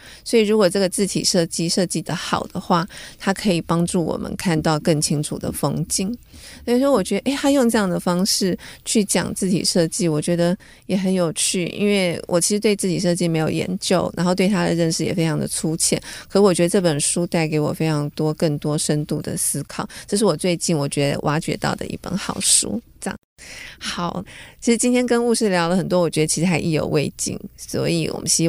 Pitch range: 165-190 Hz